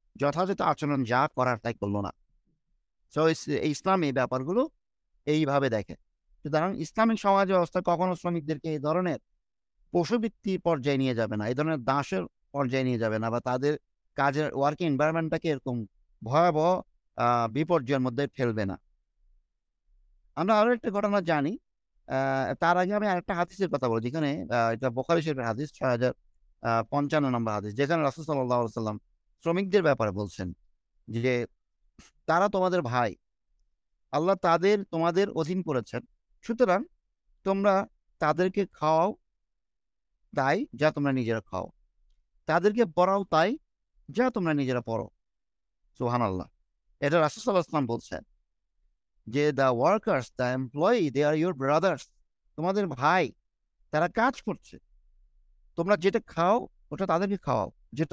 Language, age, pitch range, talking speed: English, 50-69, 120-180 Hz, 80 wpm